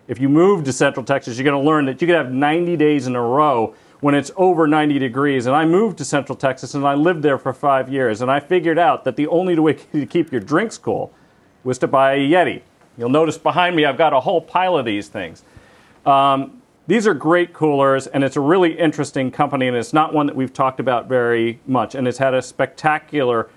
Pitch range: 135-175 Hz